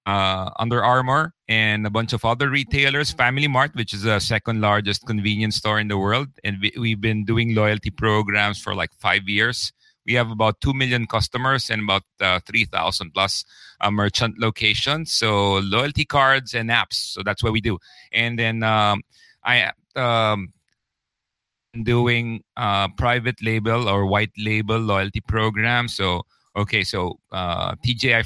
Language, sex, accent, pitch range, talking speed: English, male, Filipino, 100-120 Hz, 160 wpm